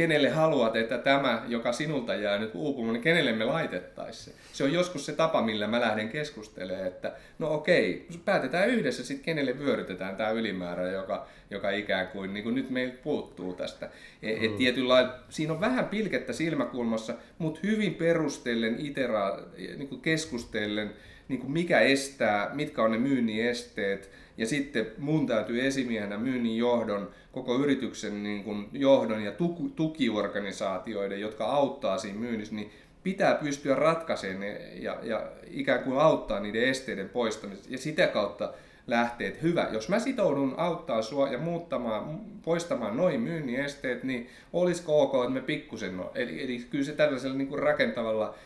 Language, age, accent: Finnish, 30-49, native